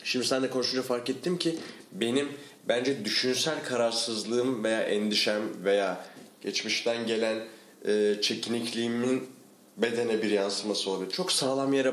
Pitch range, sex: 110-160 Hz, male